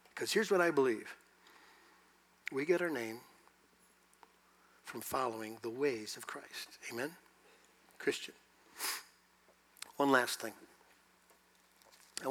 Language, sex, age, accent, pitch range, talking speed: English, male, 60-79, American, 140-200 Hz, 100 wpm